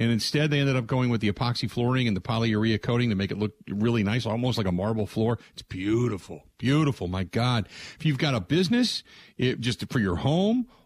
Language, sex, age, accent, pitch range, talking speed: English, male, 50-69, American, 105-150 Hz, 215 wpm